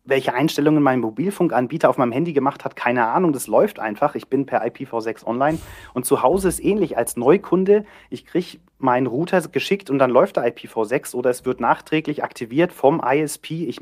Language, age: German, 30-49